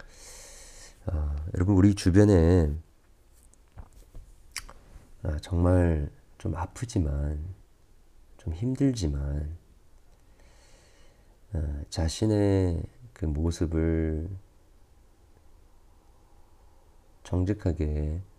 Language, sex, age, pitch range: Korean, male, 40-59, 75-95 Hz